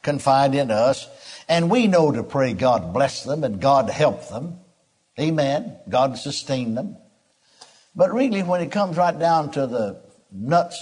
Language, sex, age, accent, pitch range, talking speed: English, male, 60-79, American, 130-165 Hz, 160 wpm